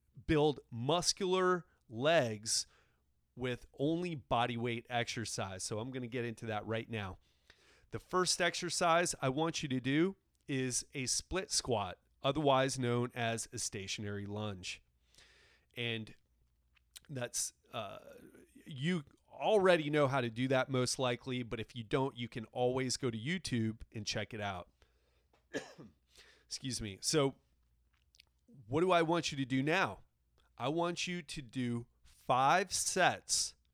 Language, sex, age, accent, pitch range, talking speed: English, male, 30-49, American, 100-150 Hz, 140 wpm